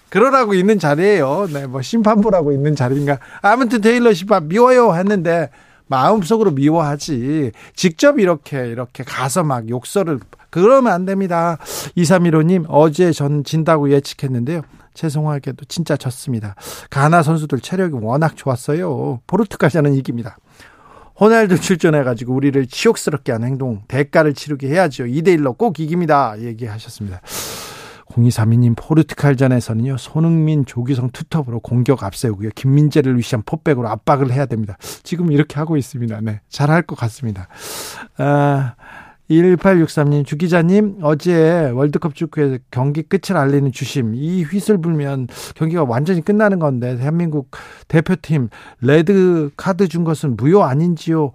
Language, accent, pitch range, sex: Korean, native, 135-175 Hz, male